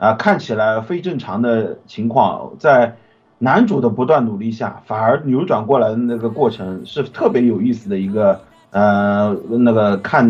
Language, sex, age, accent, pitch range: Chinese, male, 30-49, native, 110-140 Hz